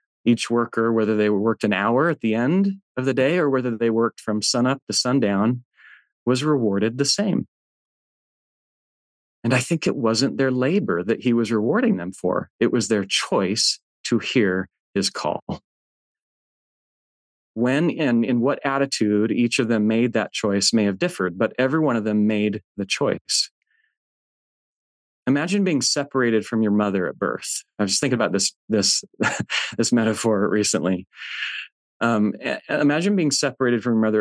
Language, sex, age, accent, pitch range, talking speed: English, male, 30-49, American, 105-130 Hz, 160 wpm